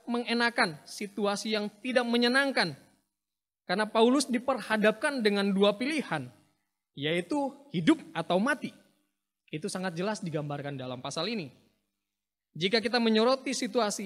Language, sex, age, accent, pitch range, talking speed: Indonesian, male, 20-39, native, 170-260 Hz, 110 wpm